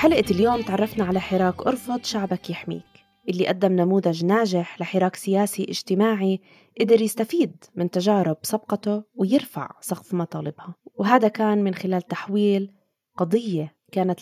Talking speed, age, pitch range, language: 130 wpm, 20-39, 170-210 Hz, Arabic